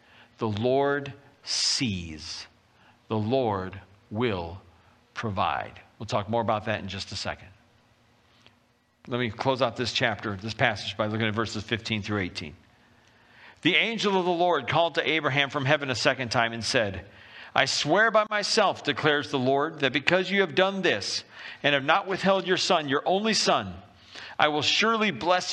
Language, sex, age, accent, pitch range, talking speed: English, male, 50-69, American, 115-155 Hz, 170 wpm